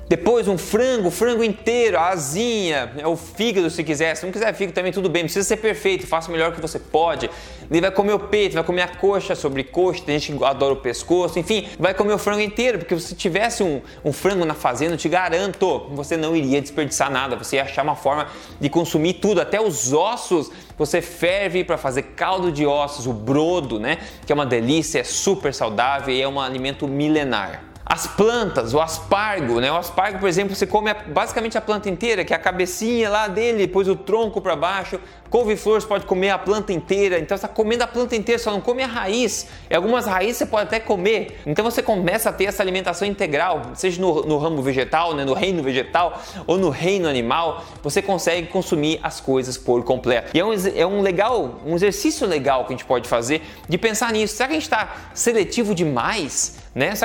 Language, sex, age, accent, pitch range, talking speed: Portuguese, male, 20-39, Brazilian, 150-205 Hz, 215 wpm